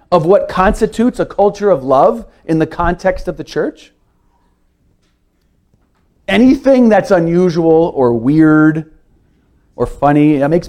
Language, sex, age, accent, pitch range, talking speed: English, male, 40-59, American, 135-210 Hz, 125 wpm